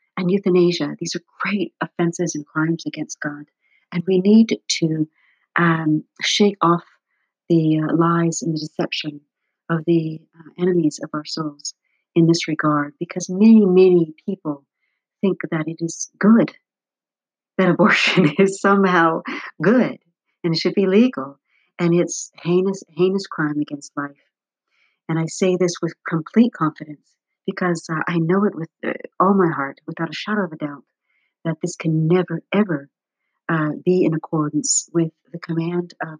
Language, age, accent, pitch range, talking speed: English, 50-69, American, 155-190 Hz, 155 wpm